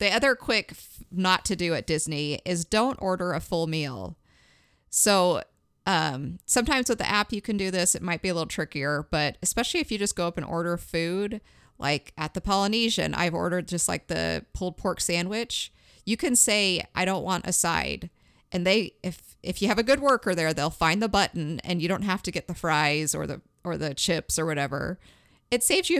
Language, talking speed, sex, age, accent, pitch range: English, 210 wpm, female, 30-49, American, 165-210 Hz